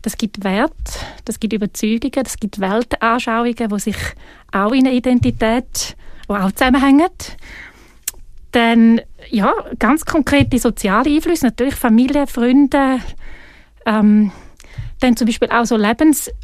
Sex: female